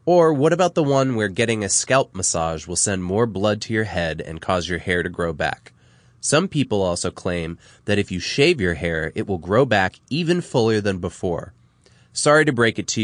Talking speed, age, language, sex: 215 wpm, 20-39, English, male